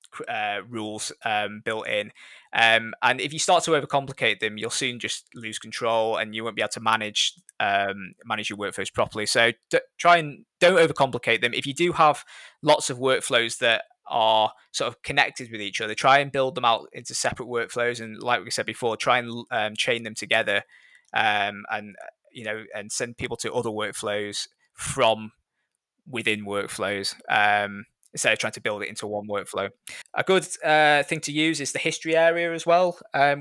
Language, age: English, 20-39